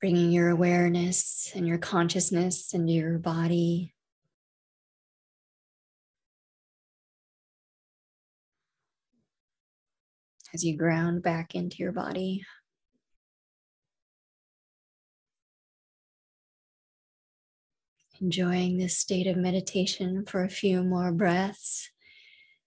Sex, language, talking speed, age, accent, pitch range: female, English, 70 wpm, 20-39, American, 170-185 Hz